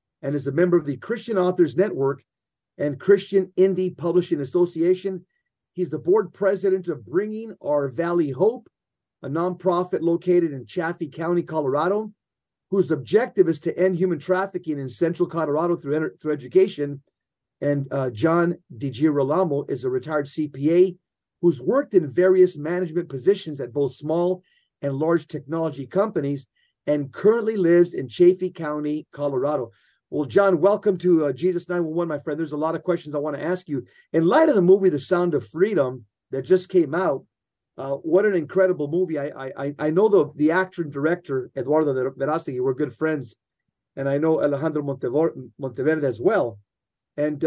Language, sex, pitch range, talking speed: English, male, 145-185 Hz, 165 wpm